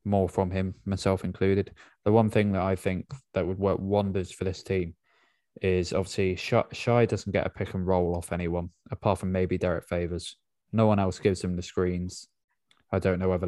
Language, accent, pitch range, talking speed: English, British, 90-105 Hz, 190 wpm